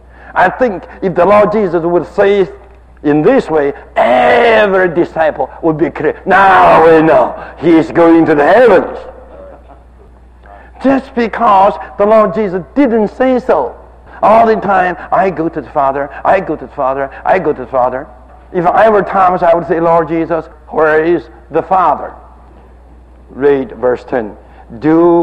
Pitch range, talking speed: 155-210 Hz, 160 wpm